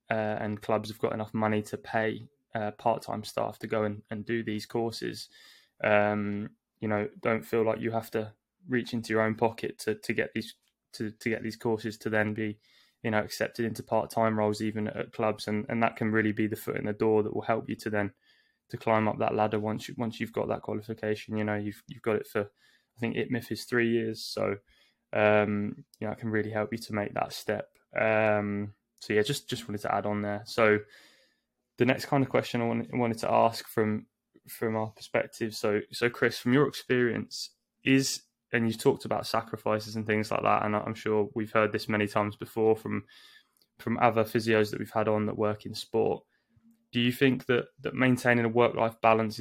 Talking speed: 220 wpm